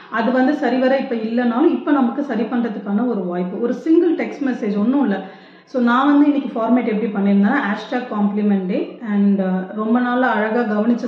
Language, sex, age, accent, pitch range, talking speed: Tamil, female, 30-49, native, 205-270 Hz, 175 wpm